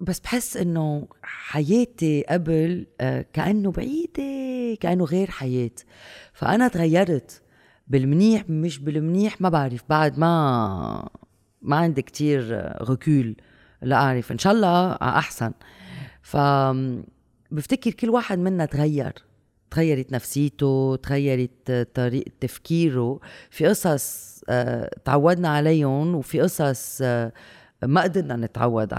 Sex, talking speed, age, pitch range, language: female, 100 wpm, 30-49, 125-170 Hz, Arabic